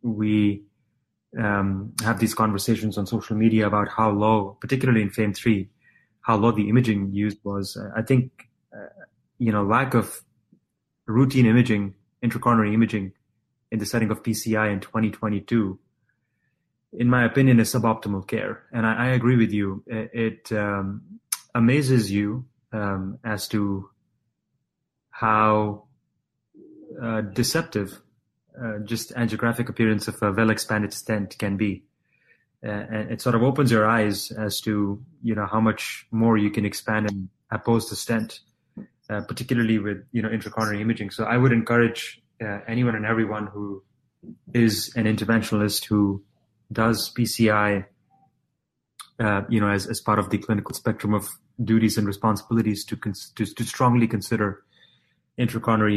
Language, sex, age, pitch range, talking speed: English, male, 30-49, 105-115 Hz, 145 wpm